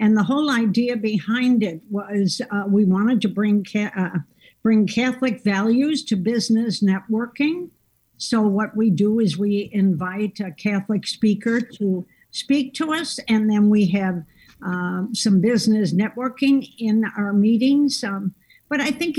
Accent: American